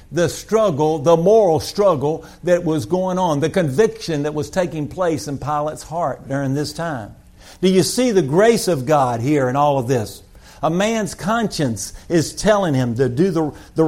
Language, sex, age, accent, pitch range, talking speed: English, male, 50-69, American, 130-190 Hz, 185 wpm